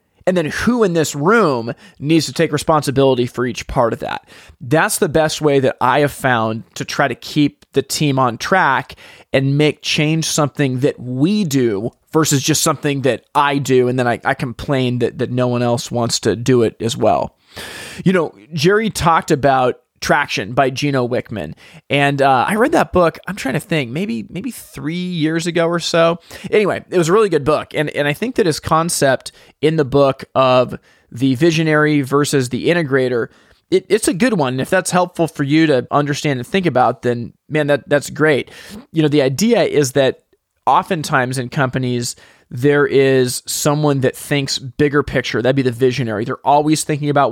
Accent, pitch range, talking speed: American, 130-155 Hz, 195 wpm